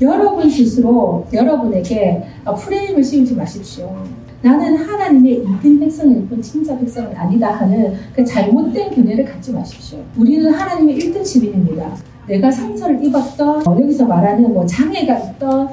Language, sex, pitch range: Korean, female, 220-290 Hz